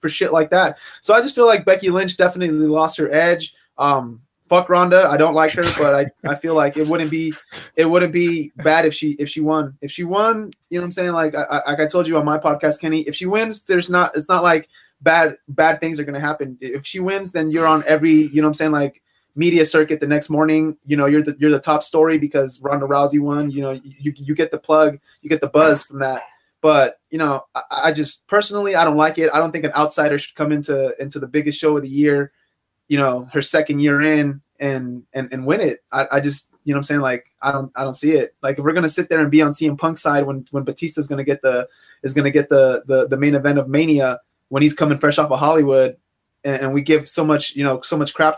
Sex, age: male, 20-39